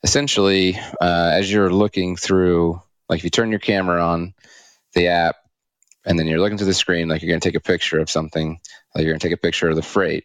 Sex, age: male, 30-49